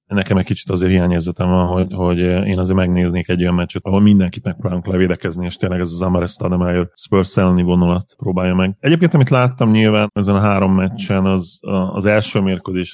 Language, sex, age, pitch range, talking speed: Hungarian, male, 30-49, 90-100 Hz, 185 wpm